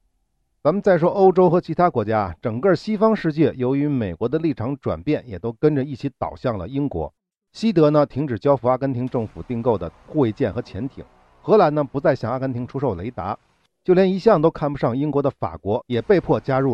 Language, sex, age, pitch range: Chinese, male, 50-69, 100-150 Hz